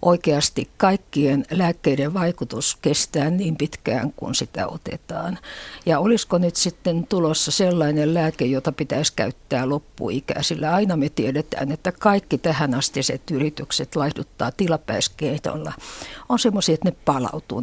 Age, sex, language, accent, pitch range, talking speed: 60-79, female, Finnish, native, 145-175 Hz, 125 wpm